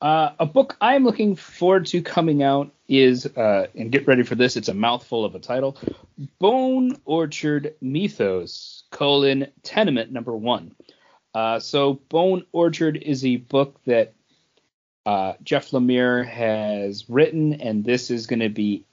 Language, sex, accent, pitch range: English, male, American, 115-150 Hz